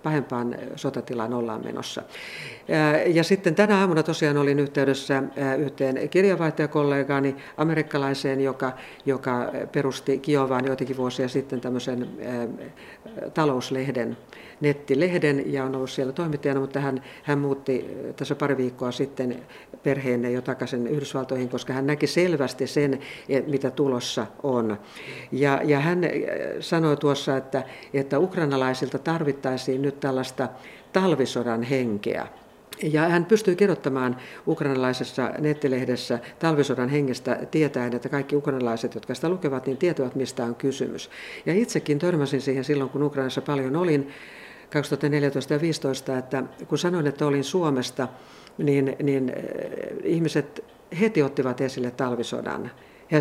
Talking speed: 120 wpm